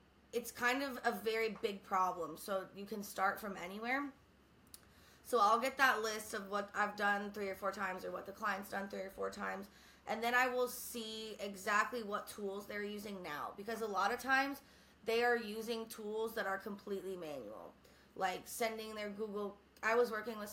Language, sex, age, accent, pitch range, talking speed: English, female, 20-39, American, 195-225 Hz, 195 wpm